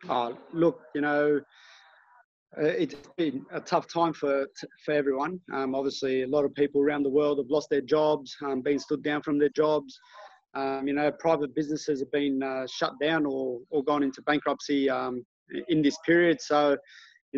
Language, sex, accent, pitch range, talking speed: English, male, Australian, 140-165 Hz, 185 wpm